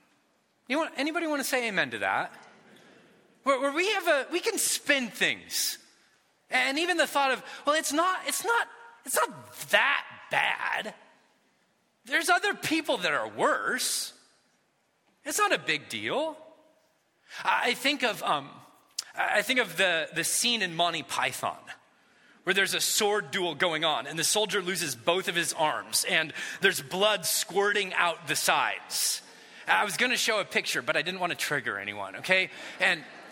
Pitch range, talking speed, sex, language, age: 210-305 Hz, 170 wpm, male, English, 30-49